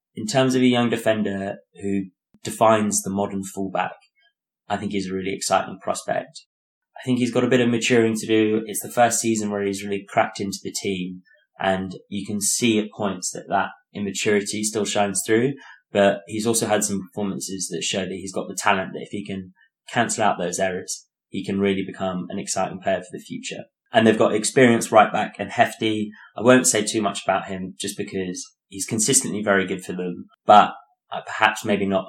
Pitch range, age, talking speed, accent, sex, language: 95-110 Hz, 20-39, 205 wpm, British, male, English